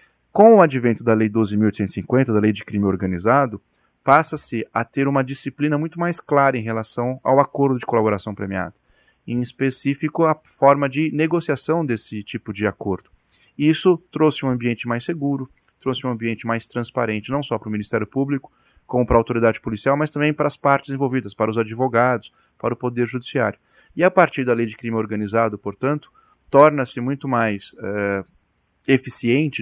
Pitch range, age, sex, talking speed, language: 110-135 Hz, 30-49, male, 170 wpm, Portuguese